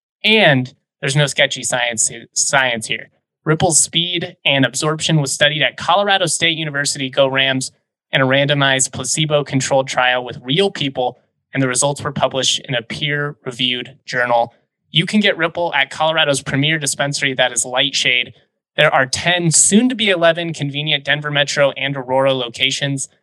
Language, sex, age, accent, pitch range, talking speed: English, male, 20-39, American, 130-160 Hz, 145 wpm